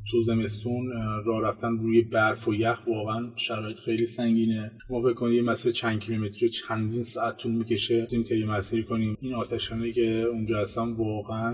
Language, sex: Persian, male